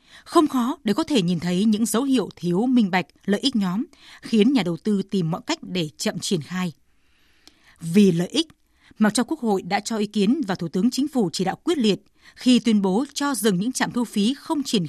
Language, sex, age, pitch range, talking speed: Vietnamese, female, 20-39, 185-245 Hz, 235 wpm